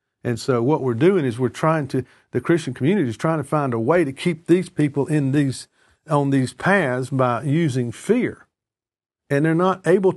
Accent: American